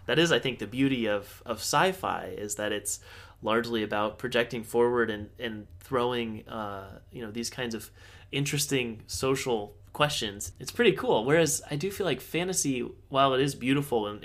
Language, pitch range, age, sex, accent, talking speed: English, 105-140 Hz, 20-39, male, American, 175 wpm